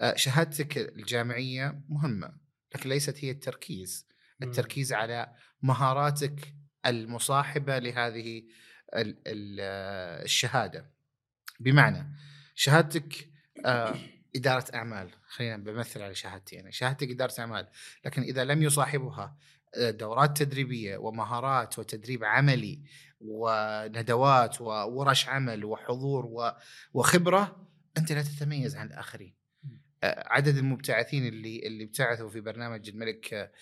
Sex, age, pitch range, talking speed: male, 30-49, 115-145 Hz, 95 wpm